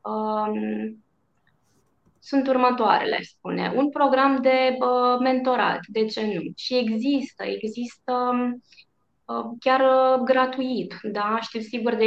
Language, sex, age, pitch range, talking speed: Romanian, female, 20-39, 205-260 Hz, 95 wpm